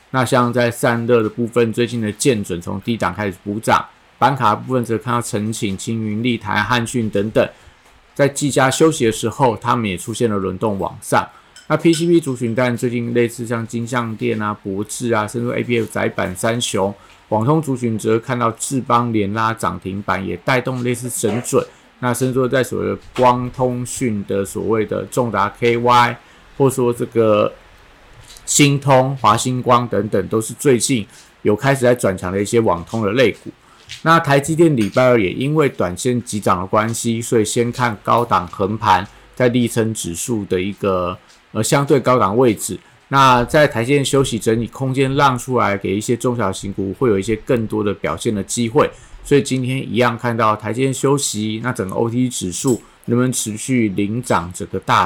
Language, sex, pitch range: Chinese, male, 105-125 Hz